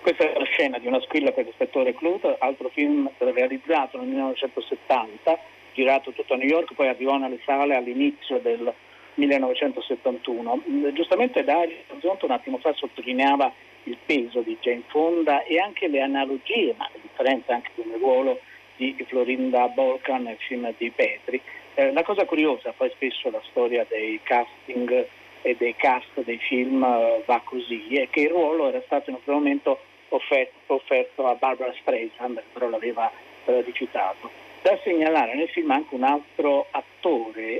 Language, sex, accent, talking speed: Italian, male, native, 160 wpm